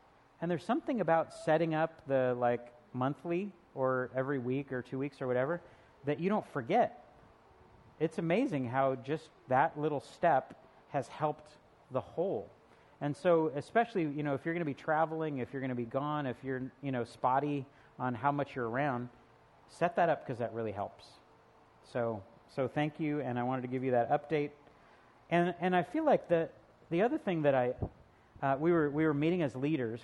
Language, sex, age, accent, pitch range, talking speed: English, male, 40-59, American, 130-165 Hz, 195 wpm